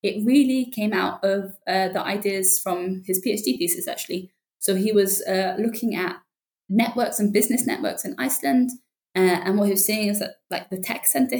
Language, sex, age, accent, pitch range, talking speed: English, female, 10-29, British, 190-220 Hz, 195 wpm